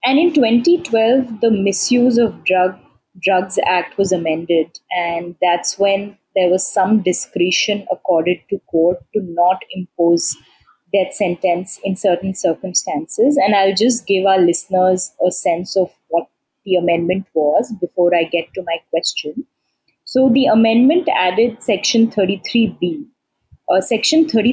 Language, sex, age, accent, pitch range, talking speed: English, female, 20-39, Indian, 185-240 Hz, 135 wpm